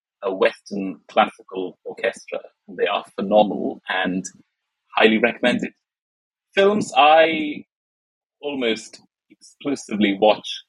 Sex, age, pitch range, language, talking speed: male, 30-49, 105-155 Hz, English, 85 wpm